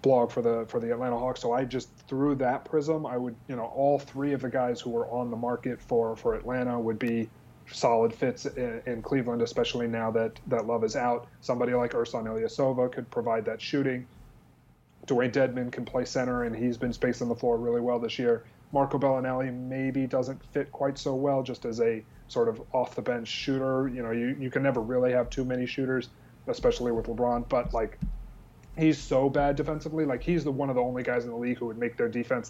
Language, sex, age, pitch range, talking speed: English, male, 30-49, 120-135 Hz, 220 wpm